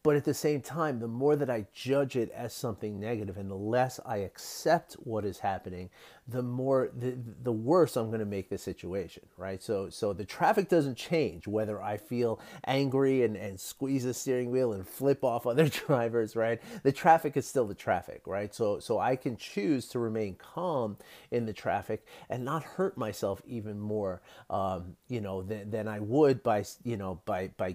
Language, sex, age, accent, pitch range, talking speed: English, male, 30-49, American, 100-135 Hz, 200 wpm